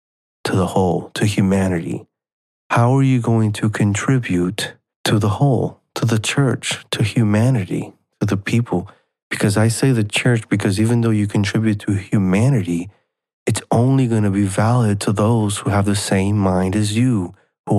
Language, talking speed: English, 170 wpm